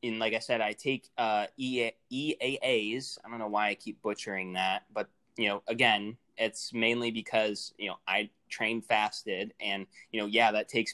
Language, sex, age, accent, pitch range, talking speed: English, male, 20-39, American, 100-125 Hz, 190 wpm